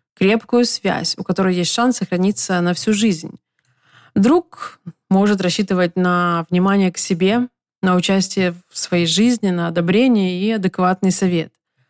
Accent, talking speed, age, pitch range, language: native, 135 wpm, 20-39, 175-210 Hz, Russian